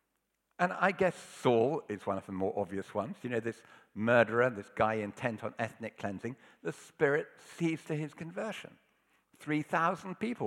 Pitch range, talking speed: 120-200 Hz, 165 wpm